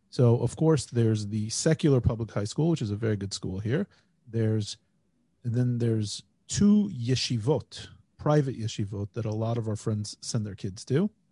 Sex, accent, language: male, American, English